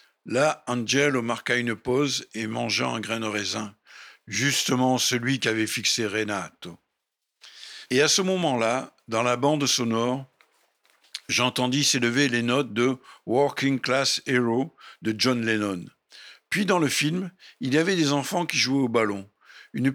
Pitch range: 120-155 Hz